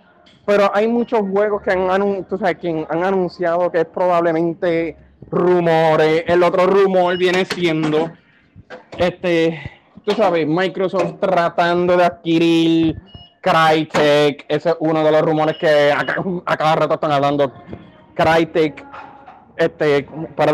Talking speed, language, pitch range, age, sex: 125 wpm, Spanish, 145-175 Hz, 20-39, male